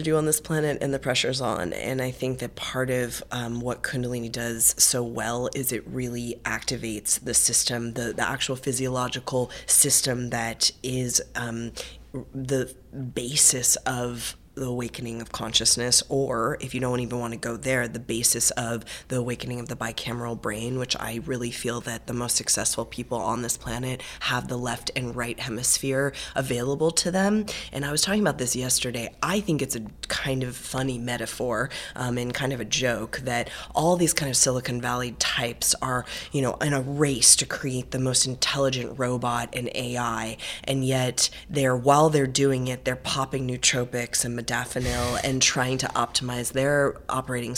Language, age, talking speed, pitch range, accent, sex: English, 20-39, 180 wpm, 120-135 Hz, American, female